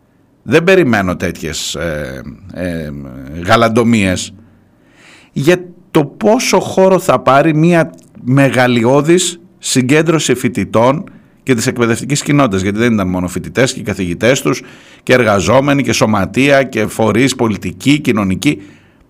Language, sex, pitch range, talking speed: Greek, male, 100-160 Hz, 115 wpm